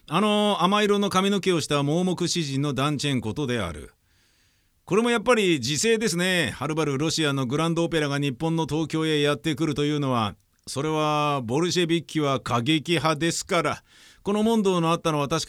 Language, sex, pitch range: Japanese, male, 130-170 Hz